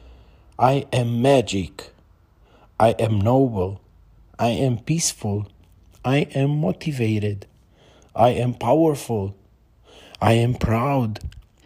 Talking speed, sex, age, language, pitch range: 95 wpm, male, 40-59, English, 100-130 Hz